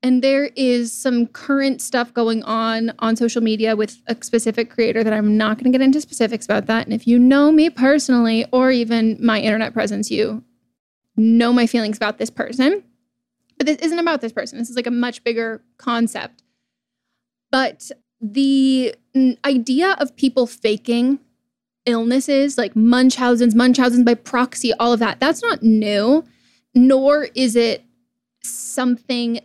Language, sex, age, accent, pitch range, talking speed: English, female, 10-29, American, 230-260 Hz, 160 wpm